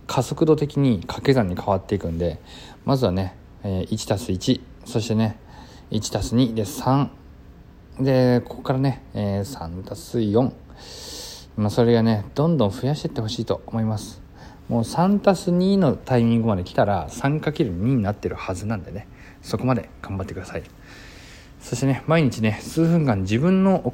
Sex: male